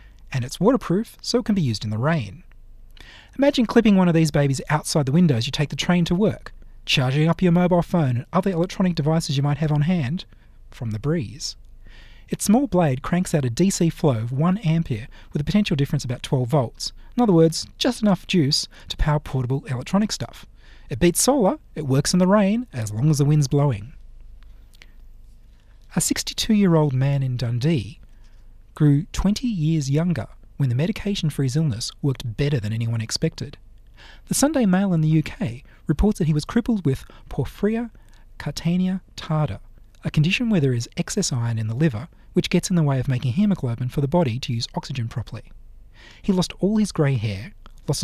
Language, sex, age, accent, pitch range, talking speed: English, male, 30-49, Australian, 120-180 Hz, 190 wpm